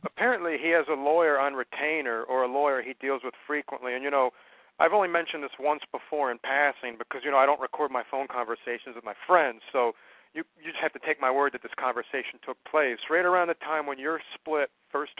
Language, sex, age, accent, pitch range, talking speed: English, male, 40-59, American, 130-150 Hz, 235 wpm